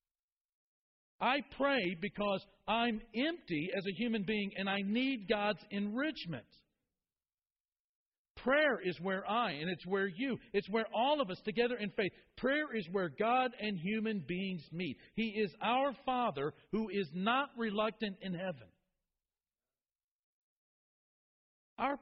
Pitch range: 140-215 Hz